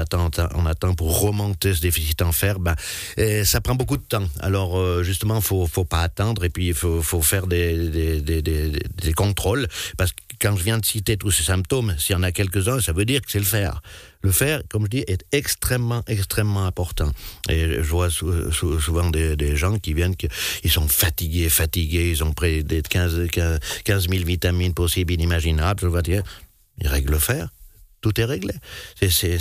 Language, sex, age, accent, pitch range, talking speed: French, male, 60-79, French, 85-105 Hz, 200 wpm